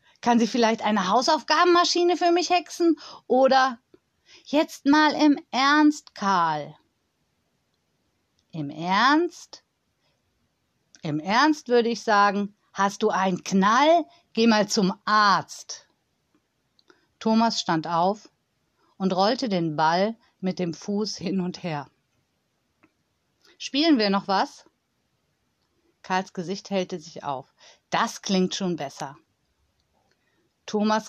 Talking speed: 110 wpm